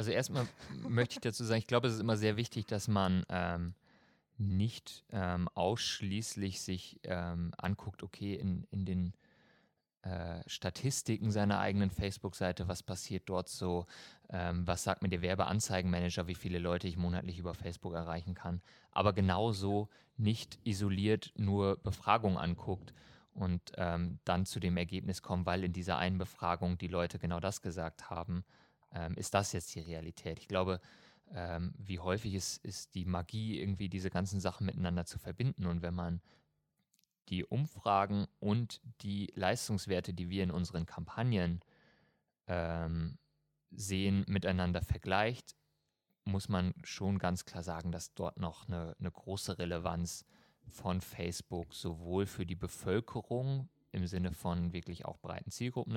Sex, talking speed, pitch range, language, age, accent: male, 150 wpm, 90-105 Hz, German, 30-49, German